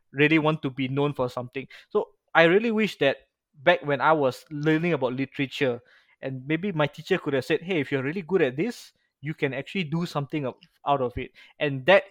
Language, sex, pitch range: Malay, male, 135-165 Hz